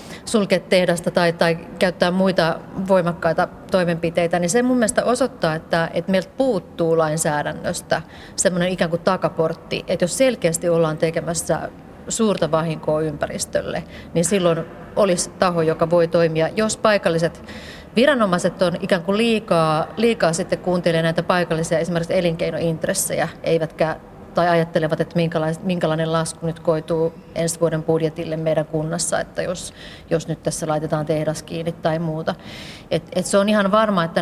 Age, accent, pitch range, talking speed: 30-49, native, 165-185 Hz, 140 wpm